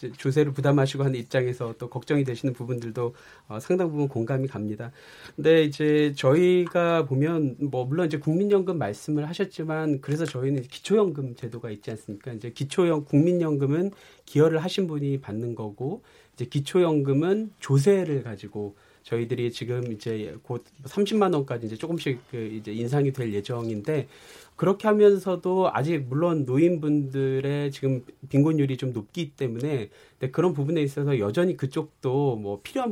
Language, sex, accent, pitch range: Korean, male, native, 120-160 Hz